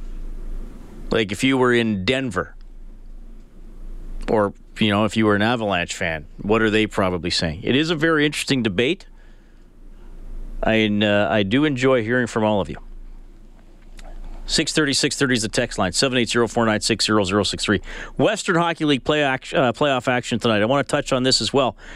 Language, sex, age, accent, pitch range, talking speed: English, male, 40-59, American, 115-150 Hz, 190 wpm